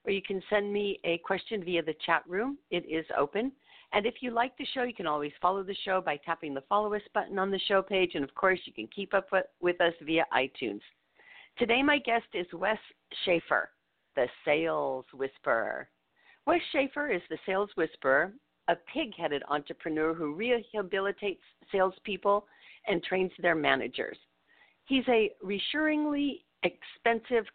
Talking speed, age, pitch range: 165 wpm, 50-69, 175-235 Hz